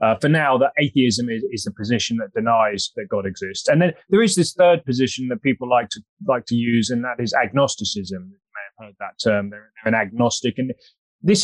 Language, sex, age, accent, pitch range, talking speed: English, male, 20-39, British, 115-145 Hz, 230 wpm